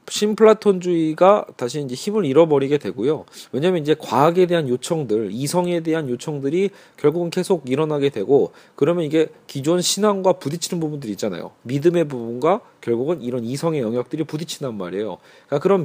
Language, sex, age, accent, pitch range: Korean, male, 40-59, native, 135-180 Hz